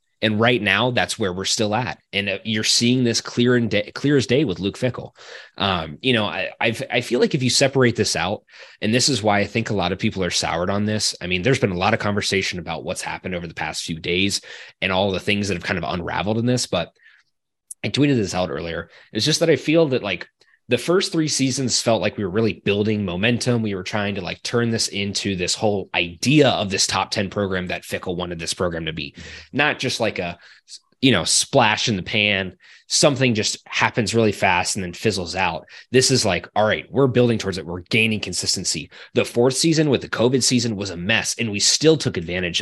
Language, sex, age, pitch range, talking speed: English, male, 20-39, 95-125 Hz, 235 wpm